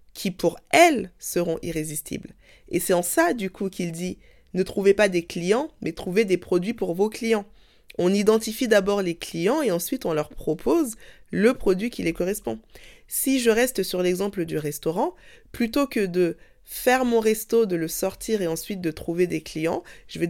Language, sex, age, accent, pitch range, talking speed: French, female, 20-39, French, 175-220 Hz, 190 wpm